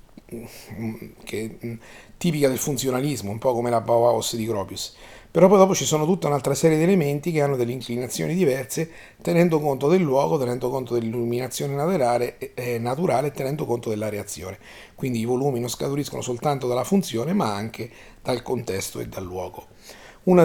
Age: 30-49